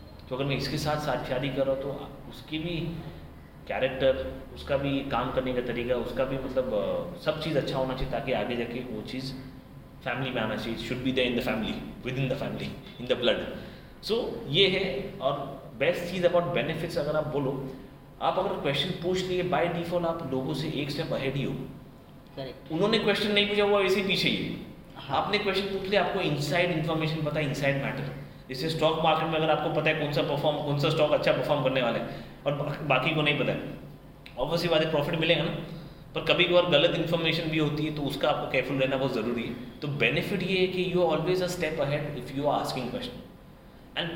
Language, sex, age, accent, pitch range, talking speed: Hindi, male, 30-49, native, 135-170 Hz, 205 wpm